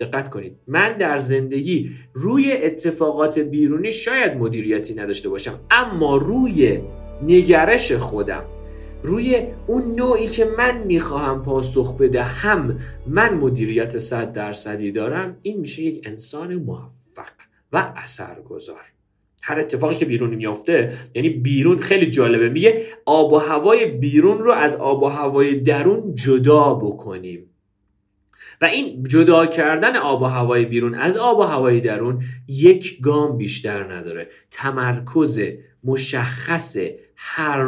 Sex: male